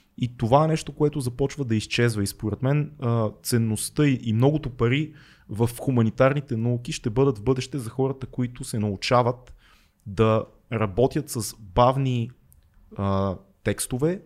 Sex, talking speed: male, 135 wpm